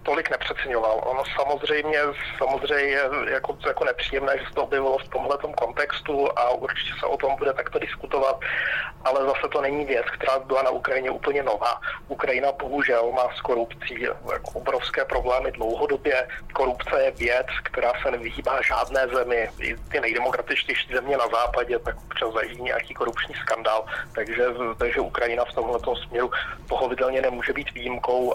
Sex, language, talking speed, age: male, Slovak, 150 wpm, 40-59